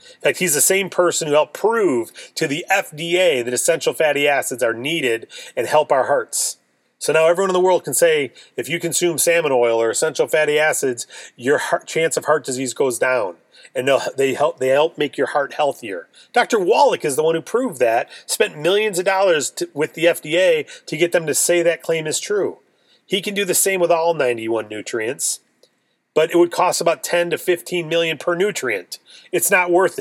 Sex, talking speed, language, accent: male, 210 wpm, English, American